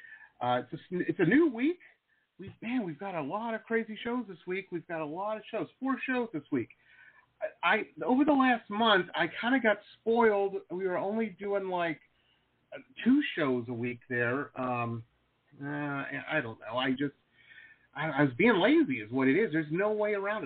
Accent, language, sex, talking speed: American, English, male, 205 wpm